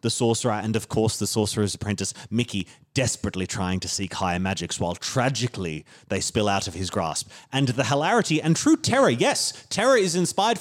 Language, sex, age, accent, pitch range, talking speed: English, male, 30-49, Australian, 115-165 Hz, 185 wpm